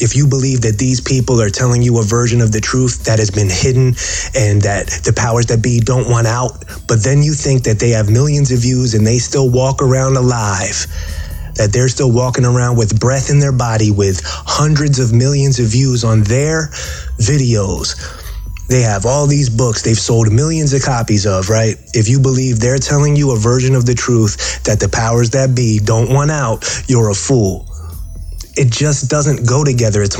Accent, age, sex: American, 30-49, male